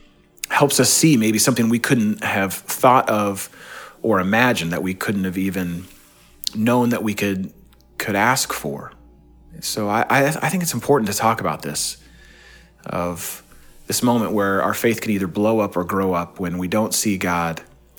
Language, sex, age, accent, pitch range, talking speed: English, male, 30-49, American, 95-120 Hz, 175 wpm